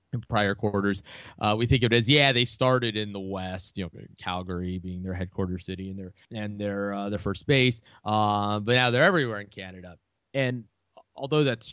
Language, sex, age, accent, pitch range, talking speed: English, male, 20-39, American, 95-130 Hz, 205 wpm